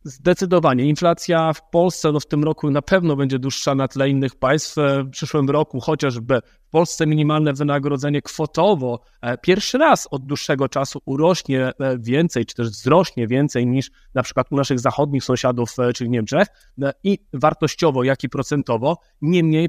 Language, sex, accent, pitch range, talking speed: Polish, male, native, 140-170 Hz, 155 wpm